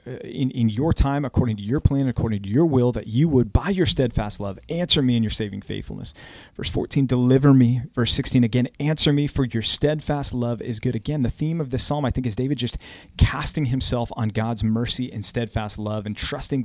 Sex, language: male, English